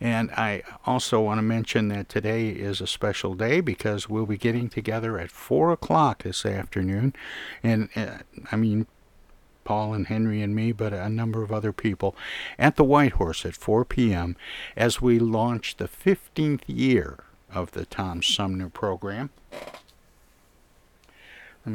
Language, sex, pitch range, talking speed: English, male, 95-115 Hz, 150 wpm